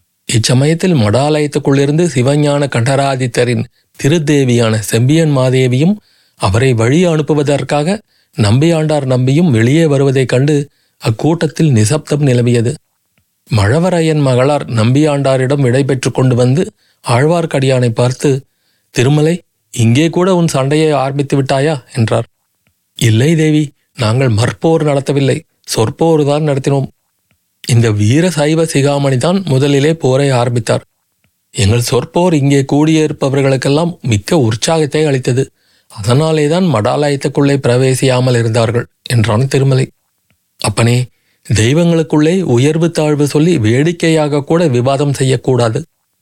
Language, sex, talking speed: Tamil, male, 90 wpm